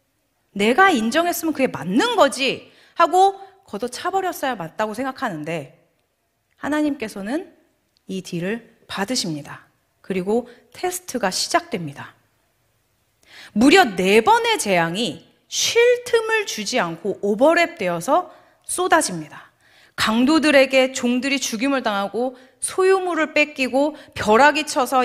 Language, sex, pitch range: Korean, female, 190-310 Hz